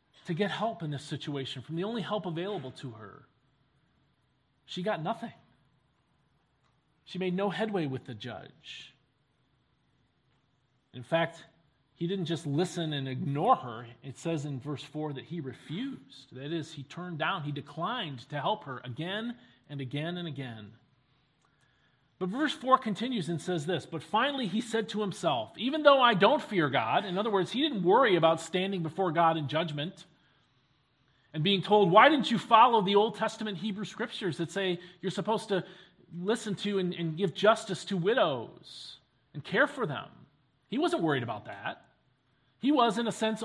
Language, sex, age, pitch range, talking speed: English, male, 40-59, 140-210 Hz, 175 wpm